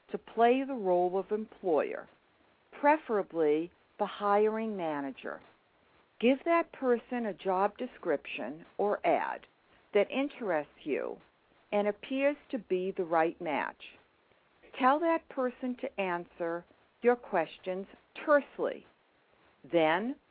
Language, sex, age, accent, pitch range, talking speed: English, female, 60-79, American, 180-255 Hz, 110 wpm